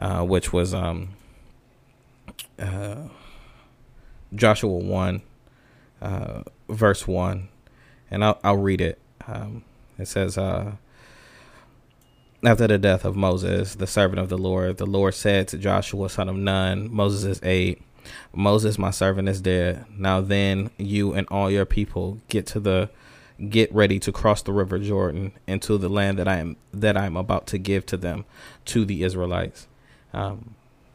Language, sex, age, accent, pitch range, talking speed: English, male, 20-39, American, 95-105 Hz, 155 wpm